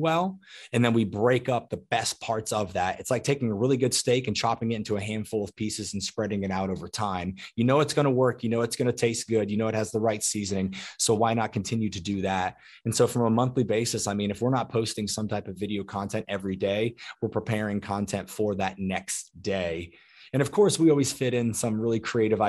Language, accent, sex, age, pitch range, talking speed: English, American, male, 20-39, 100-120 Hz, 255 wpm